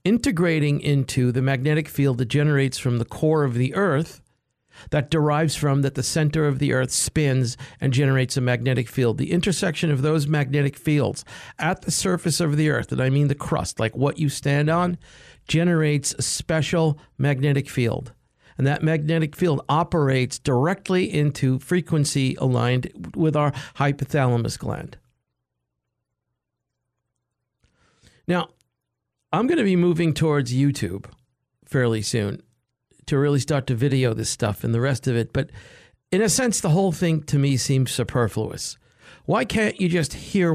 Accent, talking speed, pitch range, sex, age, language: American, 155 wpm, 130-160 Hz, male, 50-69, English